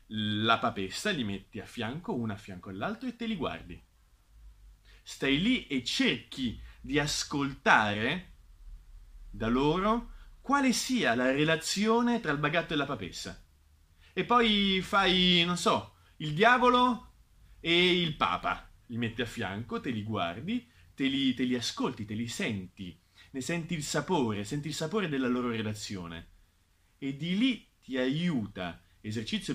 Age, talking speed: 30-49, 145 wpm